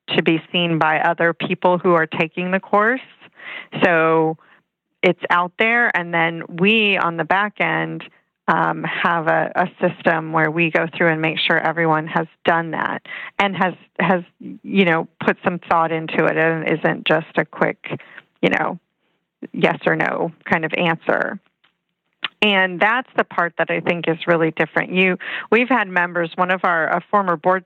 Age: 30-49